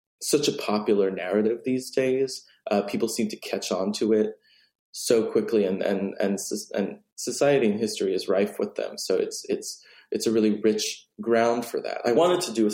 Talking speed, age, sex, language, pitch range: 200 wpm, 20-39, male, English, 105-175 Hz